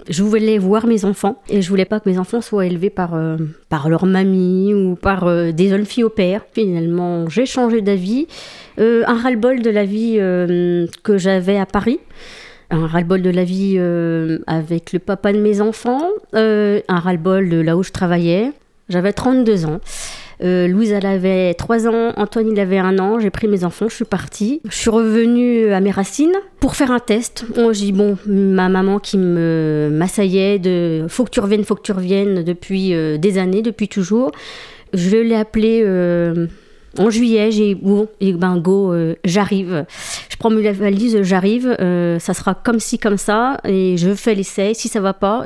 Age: 30-49